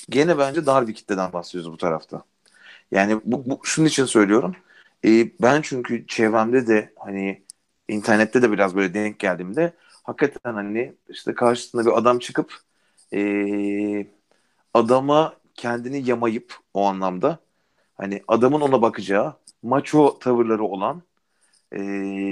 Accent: native